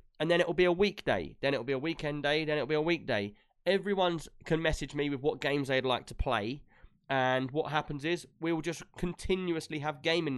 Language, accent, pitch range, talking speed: English, British, 130-165 Hz, 220 wpm